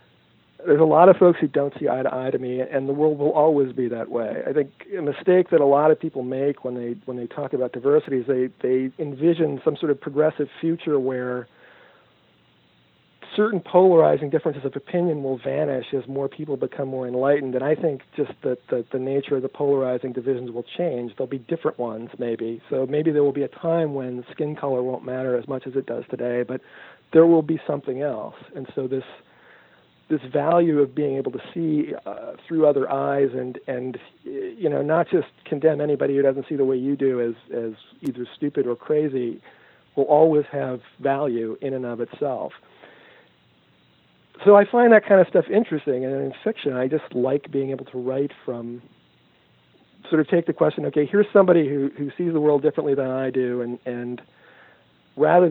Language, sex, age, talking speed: English, male, 40-59, 200 wpm